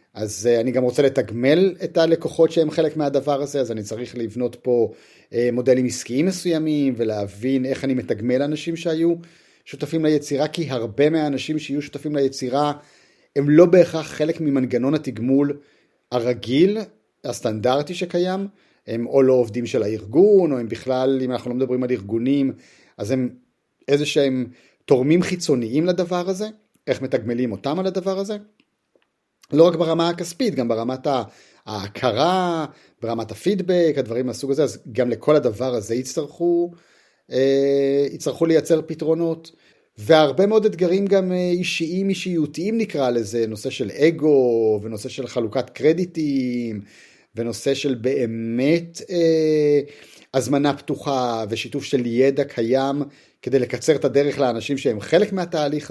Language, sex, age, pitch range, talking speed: Hebrew, male, 30-49, 125-165 Hz, 130 wpm